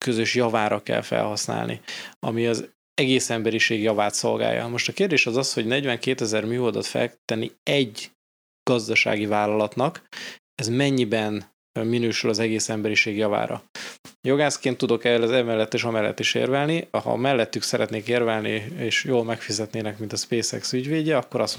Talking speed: 150 wpm